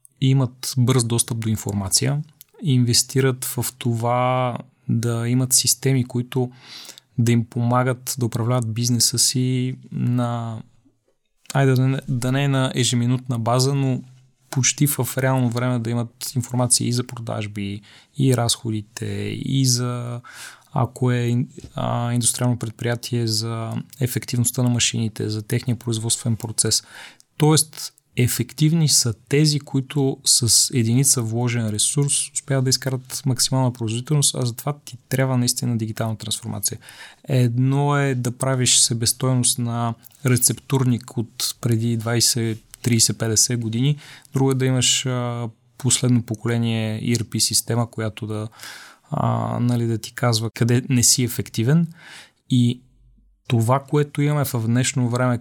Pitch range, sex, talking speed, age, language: 115-130 Hz, male, 120 wpm, 20-39, Bulgarian